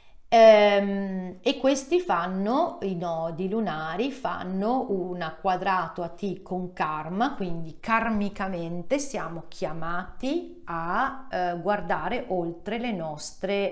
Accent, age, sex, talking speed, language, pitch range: native, 40-59, female, 95 wpm, Italian, 165-205 Hz